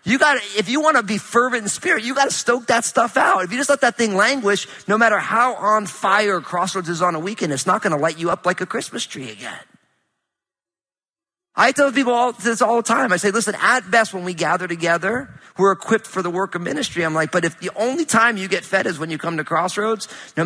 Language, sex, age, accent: English, male, 40-59, American